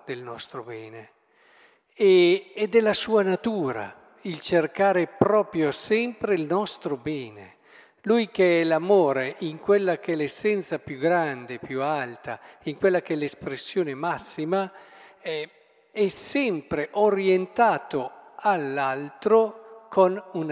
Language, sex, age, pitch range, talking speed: Italian, male, 50-69, 135-200 Hz, 120 wpm